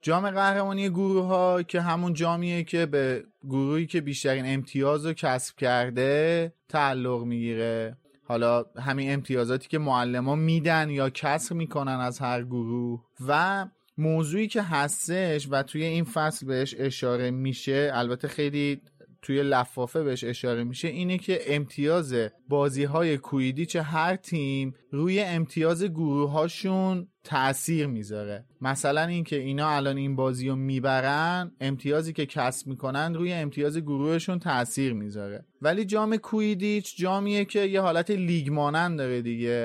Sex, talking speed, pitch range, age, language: male, 135 wpm, 135-170 Hz, 30-49, Persian